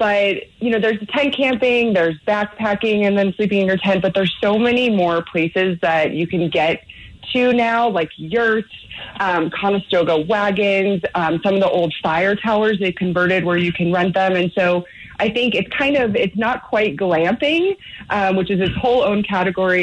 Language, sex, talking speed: English, female, 190 wpm